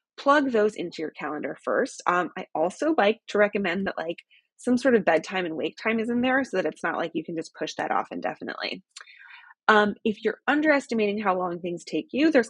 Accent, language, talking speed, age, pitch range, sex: American, English, 220 wpm, 20-39, 175-260 Hz, female